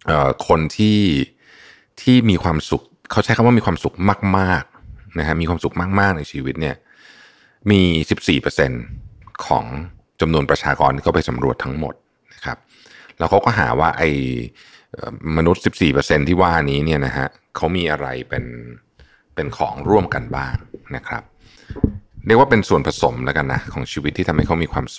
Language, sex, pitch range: Thai, male, 75-100 Hz